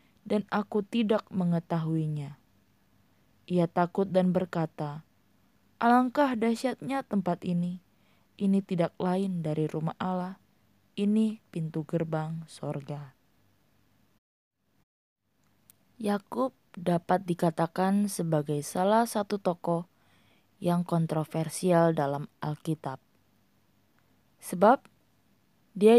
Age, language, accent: 20-39, Indonesian, native